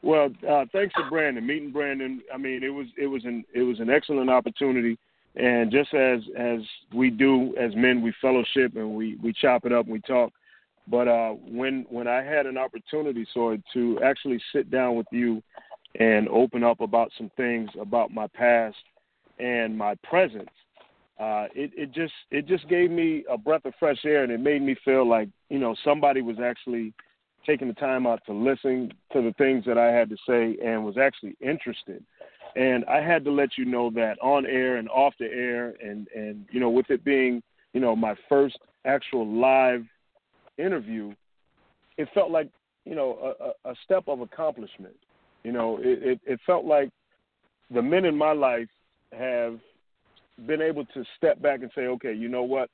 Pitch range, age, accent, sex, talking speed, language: 115-140 Hz, 40-59, American, male, 190 wpm, English